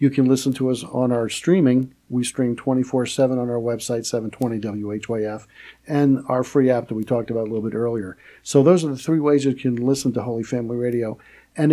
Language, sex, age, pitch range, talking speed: English, male, 50-69, 125-140 Hz, 210 wpm